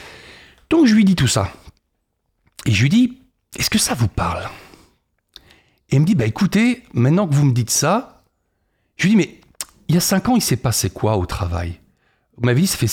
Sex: male